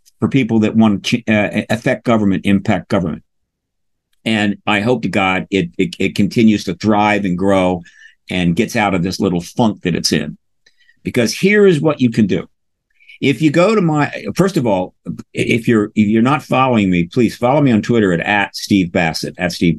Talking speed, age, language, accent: 195 wpm, 50-69, English, American